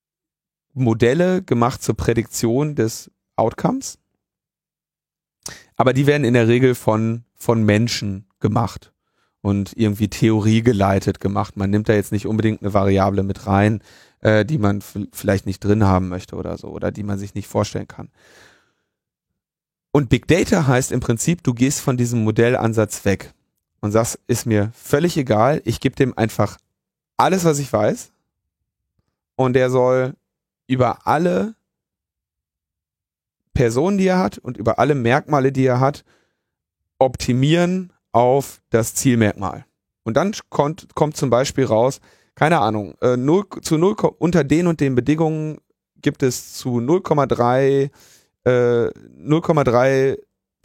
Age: 30-49